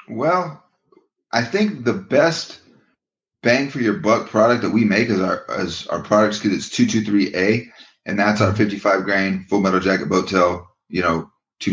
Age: 30-49